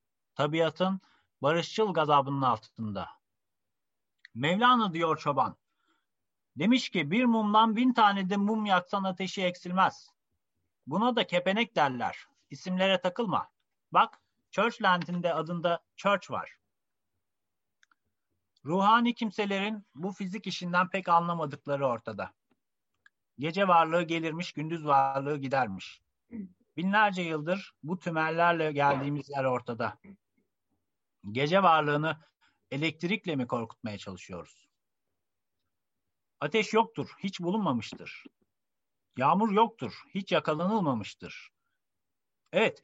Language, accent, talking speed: Turkish, native, 90 wpm